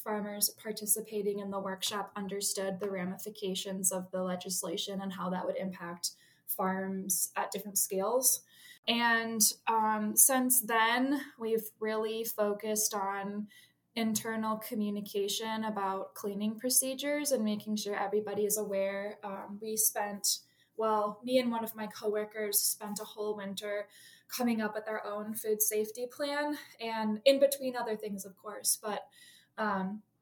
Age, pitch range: 10-29, 200-230 Hz